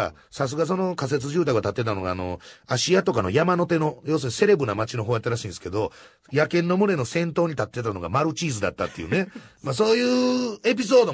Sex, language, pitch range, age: male, Japanese, 105-170 Hz, 40-59